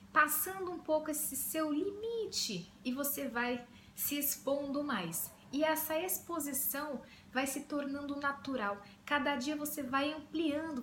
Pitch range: 245-300 Hz